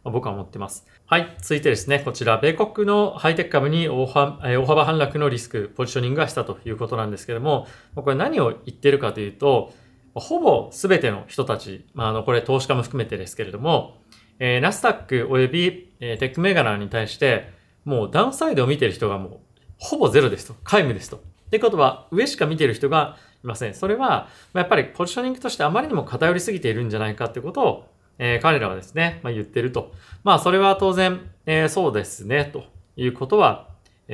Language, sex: Japanese, male